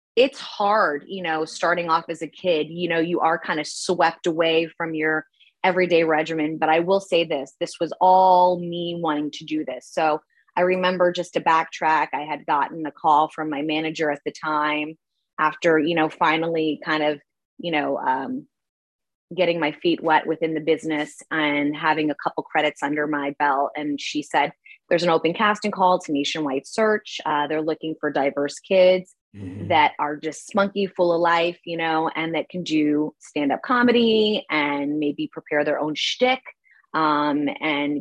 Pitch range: 155-195 Hz